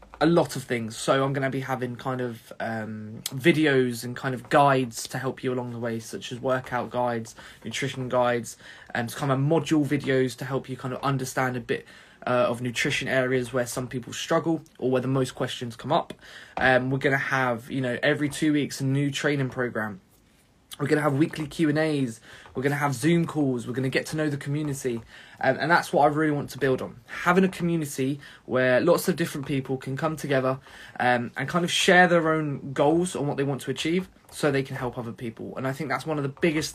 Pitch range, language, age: 125-150 Hz, English, 20-39